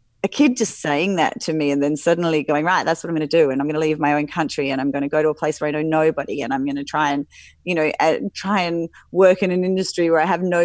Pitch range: 155-215 Hz